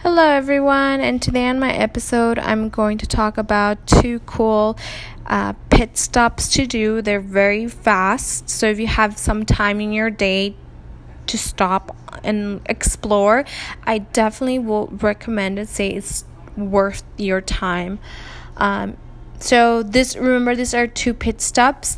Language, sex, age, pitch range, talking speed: English, female, 20-39, 195-230 Hz, 145 wpm